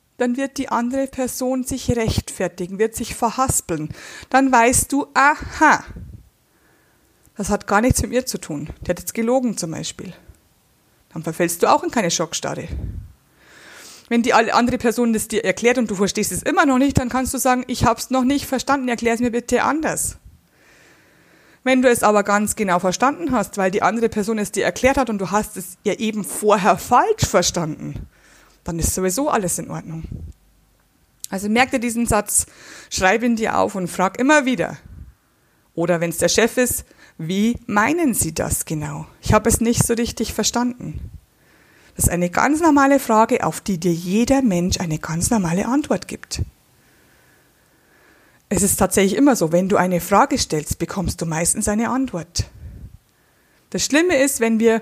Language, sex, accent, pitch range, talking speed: German, female, German, 185-255 Hz, 175 wpm